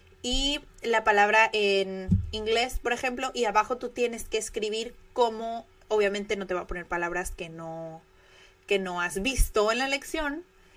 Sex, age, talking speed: female, 30-49, 165 wpm